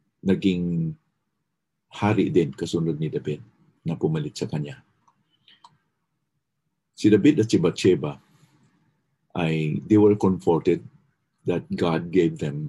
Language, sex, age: English, male, 50-69